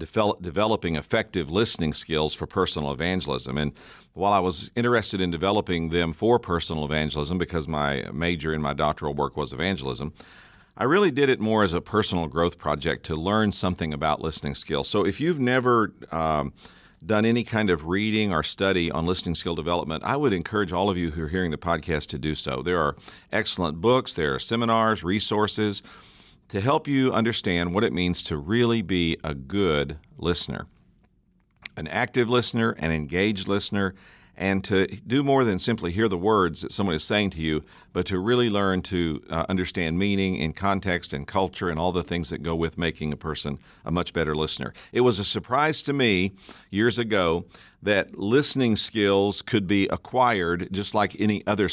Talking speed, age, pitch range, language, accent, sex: 185 wpm, 50-69, 80-105 Hz, English, American, male